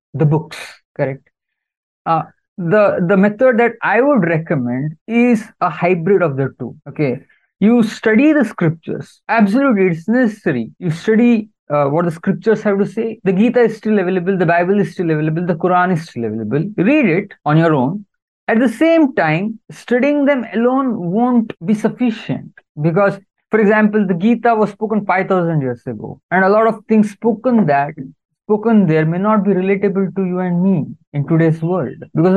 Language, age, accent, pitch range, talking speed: English, 20-39, Indian, 160-225 Hz, 180 wpm